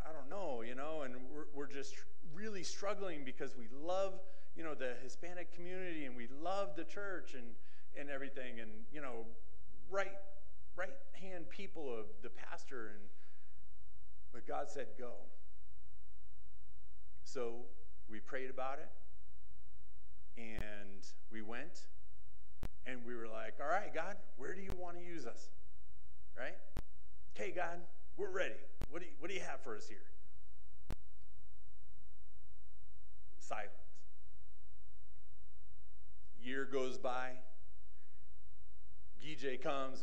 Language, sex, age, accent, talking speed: English, male, 40-59, American, 125 wpm